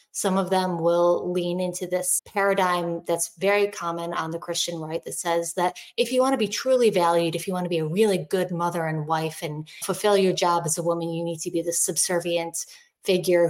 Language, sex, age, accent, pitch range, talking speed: English, female, 20-39, American, 170-195 Hz, 220 wpm